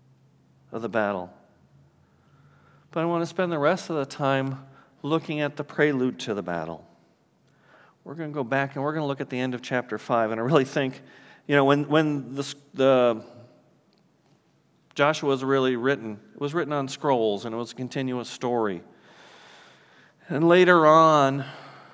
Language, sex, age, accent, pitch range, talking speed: English, male, 40-59, American, 115-145 Hz, 175 wpm